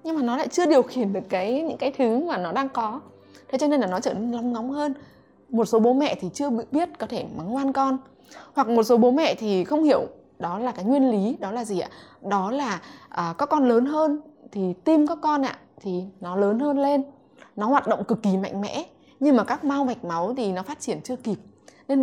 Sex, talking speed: female, 250 wpm